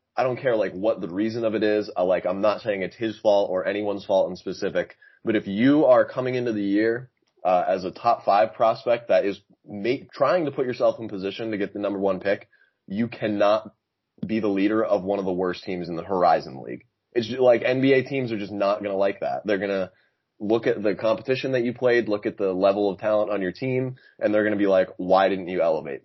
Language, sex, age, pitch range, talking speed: English, male, 20-39, 95-115 Hz, 250 wpm